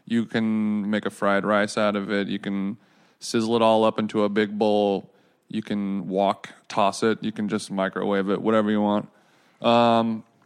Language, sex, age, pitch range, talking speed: English, male, 20-39, 110-120 Hz, 190 wpm